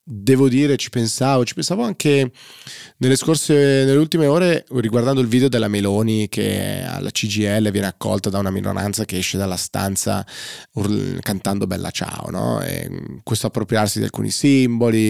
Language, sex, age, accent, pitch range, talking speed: Italian, male, 30-49, native, 100-130 Hz, 155 wpm